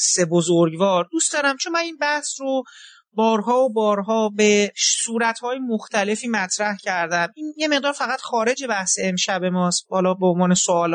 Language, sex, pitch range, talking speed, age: Persian, male, 195-280 Hz, 160 wpm, 40-59